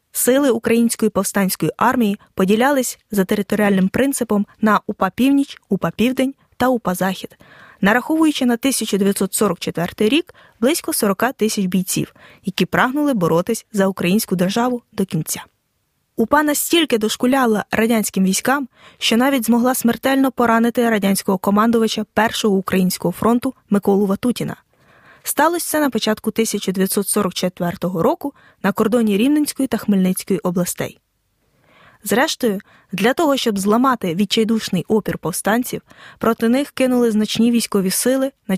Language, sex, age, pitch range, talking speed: Ukrainian, female, 20-39, 195-250 Hz, 120 wpm